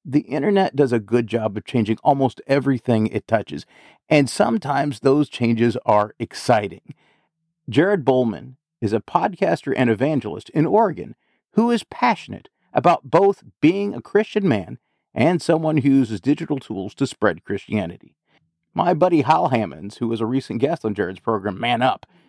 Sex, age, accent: male, 40-59, American